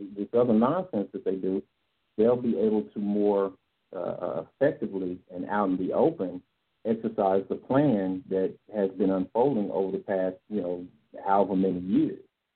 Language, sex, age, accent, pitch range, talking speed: English, male, 50-69, American, 95-105 Hz, 160 wpm